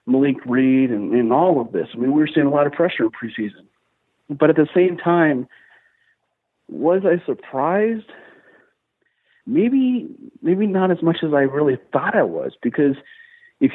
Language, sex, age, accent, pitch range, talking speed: English, male, 40-59, American, 125-170 Hz, 170 wpm